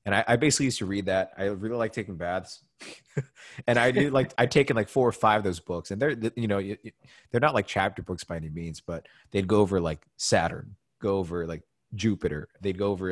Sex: male